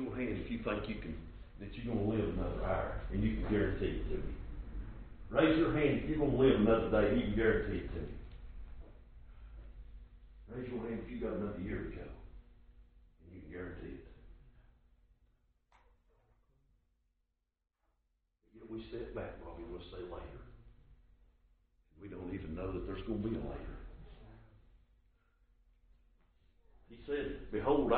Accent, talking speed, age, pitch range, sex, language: American, 165 wpm, 60-79, 85-115 Hz, male, English